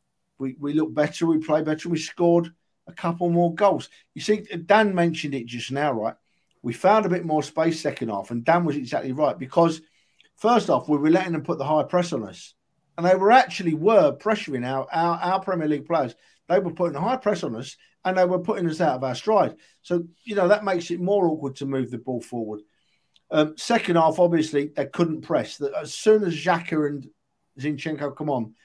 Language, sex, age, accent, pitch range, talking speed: English, male, 50-69, British, 140-180 Hz, 215 wpm